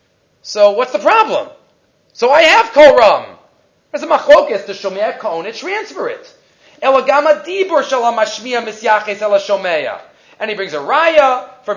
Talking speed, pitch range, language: 135 wpm, 205-295 Hz, English